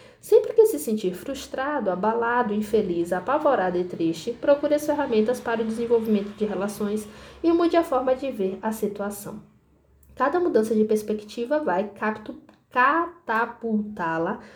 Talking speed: 130 wpm